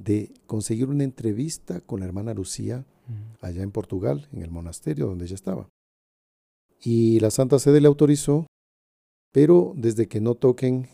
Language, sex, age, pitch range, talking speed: Spanish, male, 50-69, 95-130 Hz, 155 wpm